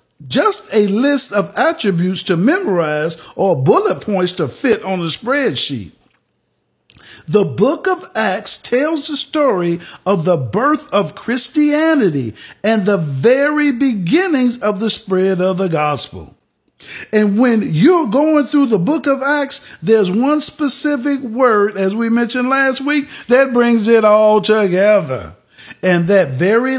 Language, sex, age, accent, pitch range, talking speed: English, male, 50-69, American, 180-280 Hz, 140 wpm